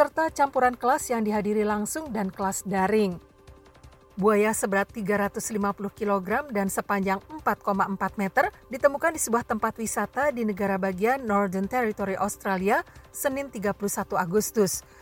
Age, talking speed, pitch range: 50-69, 125 wpm, 200-240 Hz